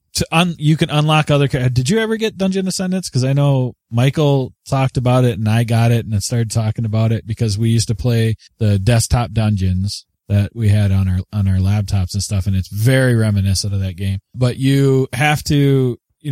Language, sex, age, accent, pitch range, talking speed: English, male, 20-39, American, 105-135 Hz, 215 wpm